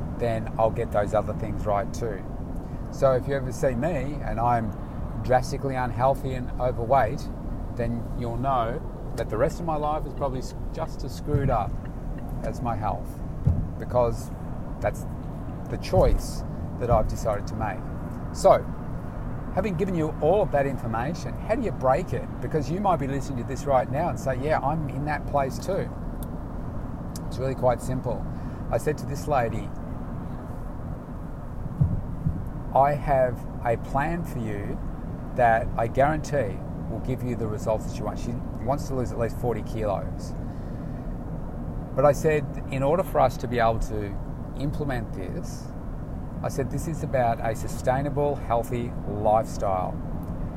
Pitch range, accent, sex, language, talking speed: 115-140 Hz, Australian, male, English, 160 wpm